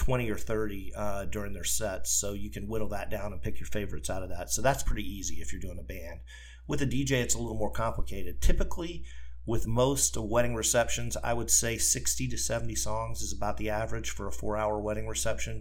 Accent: American